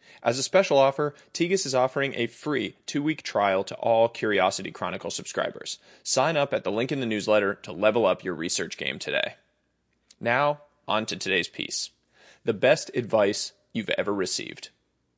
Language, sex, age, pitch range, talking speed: English, male, 20-39, 115-150 Hz, 165 wpm